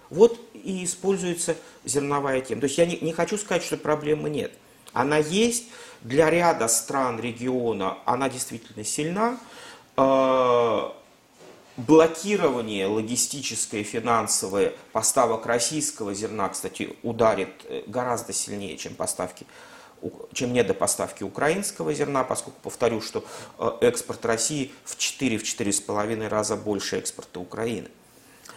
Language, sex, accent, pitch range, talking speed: Russian, male, native, 125-205 Hz, 110 wpm